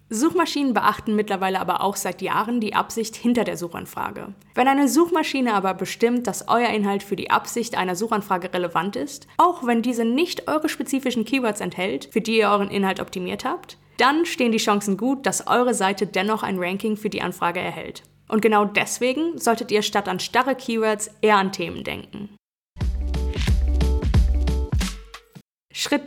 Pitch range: 205-260 Hz